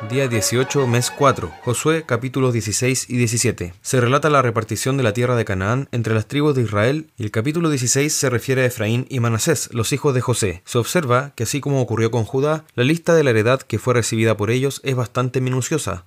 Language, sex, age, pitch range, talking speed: Spanish, male, 20-39, 115-140 Hz, 215 wpm